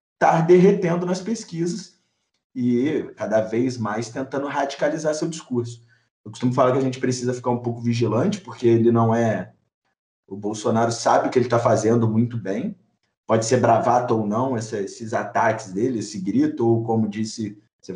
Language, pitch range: Portuguese, 115-155 Hz